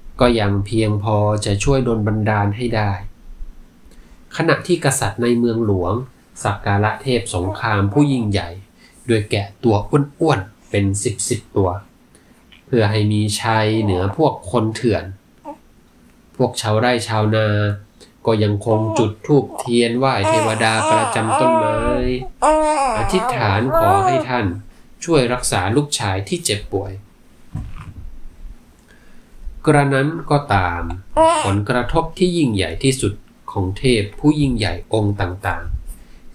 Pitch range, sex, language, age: 100-125 Hz, male, Thai, 20-39